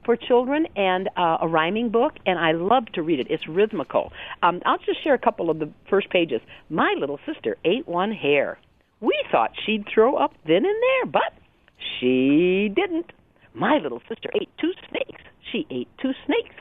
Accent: American